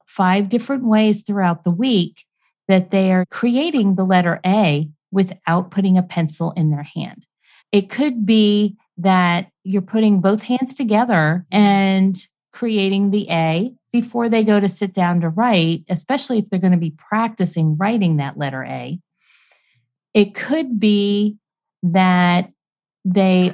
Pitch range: 170-205 Hz